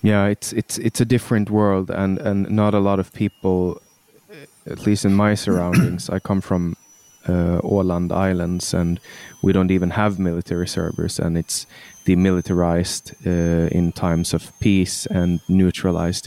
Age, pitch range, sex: 20-39, 90-100 Hz, male